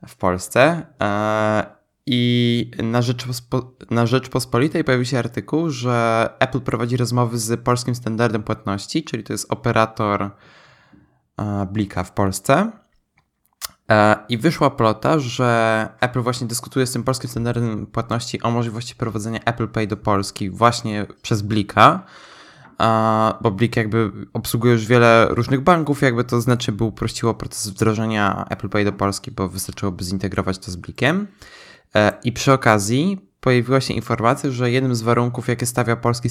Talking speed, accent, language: 140 wpm, native, Polish